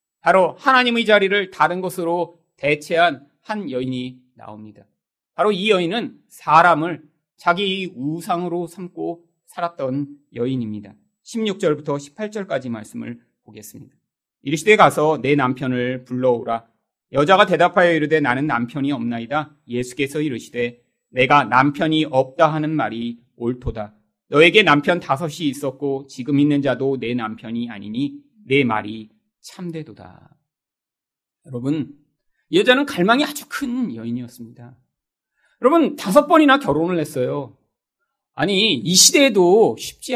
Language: Korean